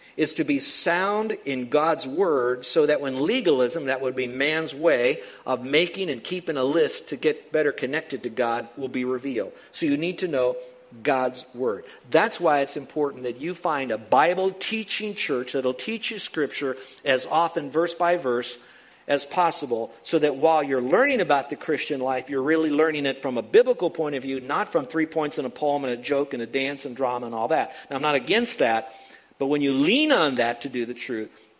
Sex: male